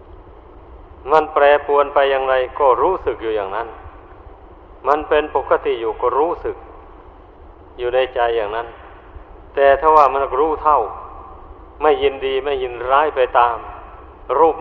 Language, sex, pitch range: Thai, male, 125-155 Hz